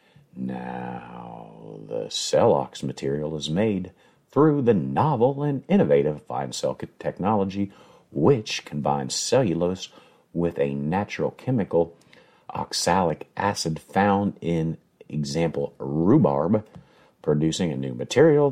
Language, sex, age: English, male, 50-69